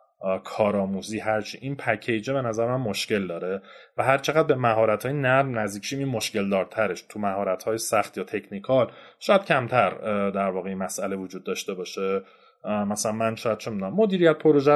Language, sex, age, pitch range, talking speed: Persian, male, 30-49, 105-140 Hz, 155 wpm